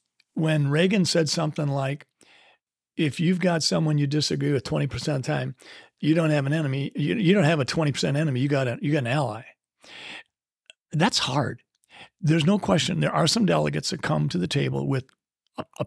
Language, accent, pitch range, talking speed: English, American, 130-160 Hz, 195 wpm